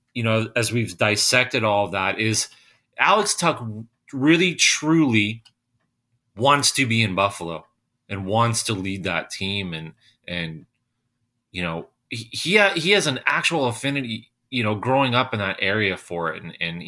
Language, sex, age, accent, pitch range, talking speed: English, male, 30-49, American, 100-125 Hz, 155 wpm